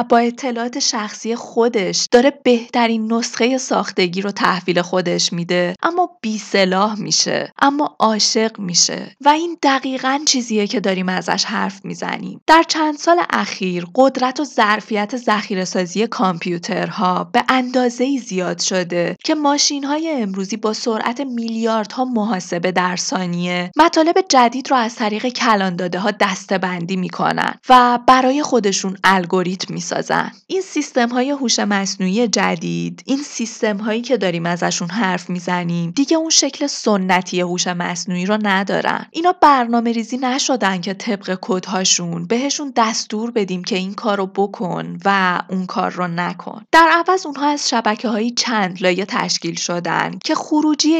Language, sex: Persian, female